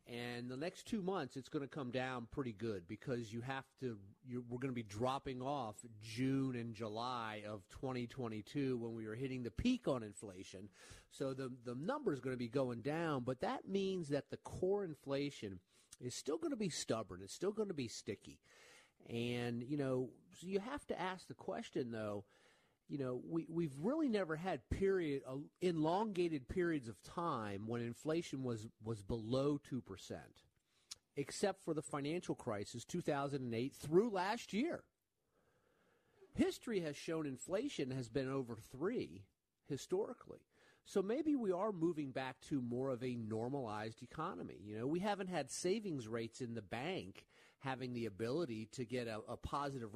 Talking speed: 170 wpm